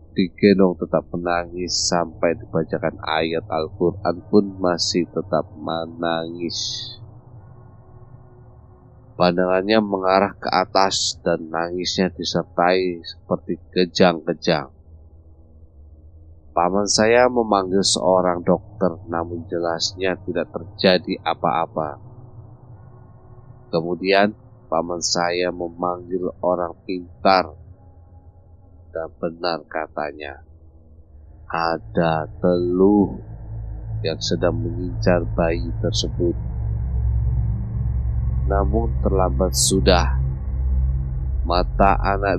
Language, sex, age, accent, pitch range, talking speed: Indonesian, male, 30-49, native, 85-100 Hz, 70 wpm